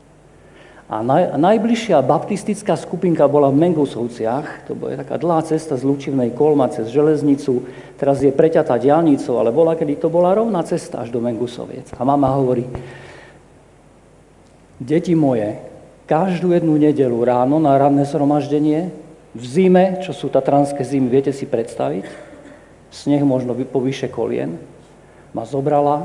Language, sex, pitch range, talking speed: Slovak, male, 125-155 Hz, 140 wpm